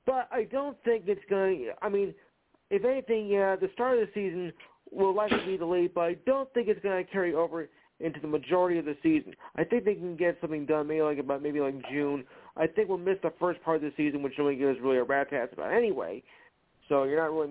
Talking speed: 245 wpm